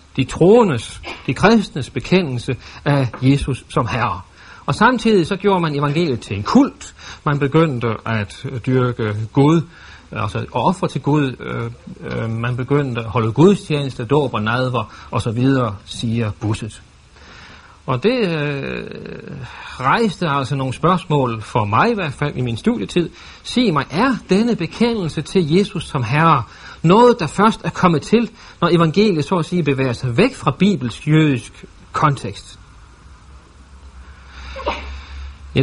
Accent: native